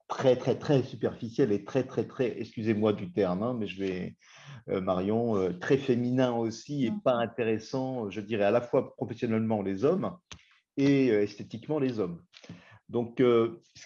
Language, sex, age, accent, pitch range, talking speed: French, male, 40-59, French, 100-120 Hz, 155 wpm